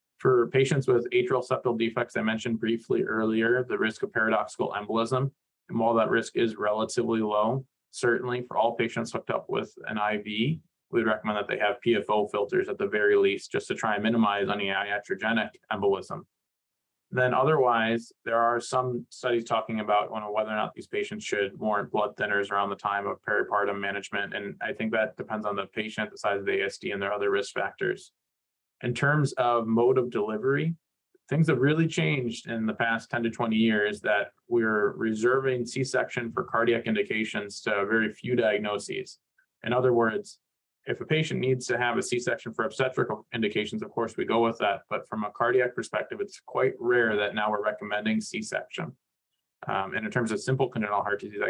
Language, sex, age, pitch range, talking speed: English, male, 20-39, 110-135 Hz, 190 wpm